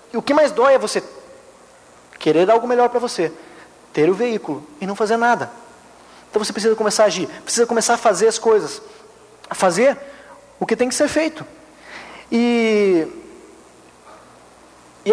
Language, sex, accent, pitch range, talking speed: Portuguese, male, Brazilian, 215-270 Hz, 160 wpm